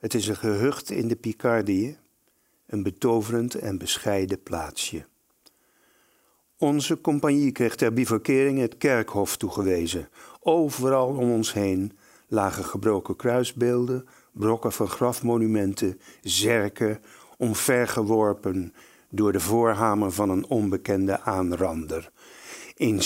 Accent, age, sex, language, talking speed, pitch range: Dutch, 50-69, male, Dutch, 105 wpm, 105-135 Hz